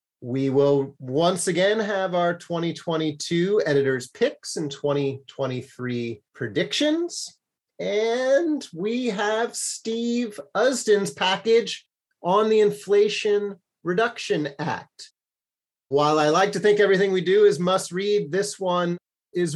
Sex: male